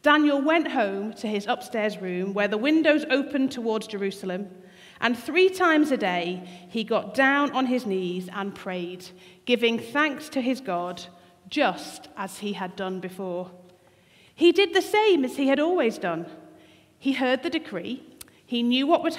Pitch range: 190-280 Hz